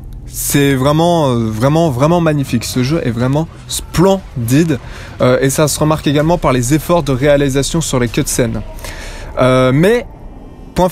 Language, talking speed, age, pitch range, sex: French, 155 wpm, 20-39, 130-170 Hz, male